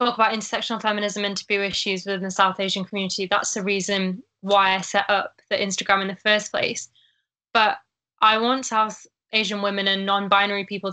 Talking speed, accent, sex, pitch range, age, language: 180 wpm, British, female, 195-215 Hz, 10-29, English